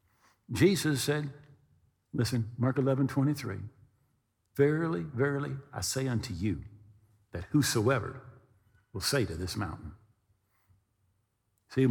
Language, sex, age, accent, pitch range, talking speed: English, male, 50-69, American, 105-145 Hz, 95 wpm